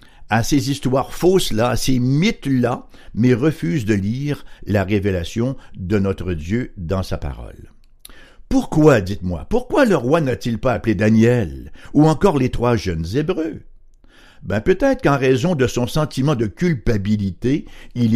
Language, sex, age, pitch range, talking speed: French, male, 60-79, 95-135 Hz, 145 wpm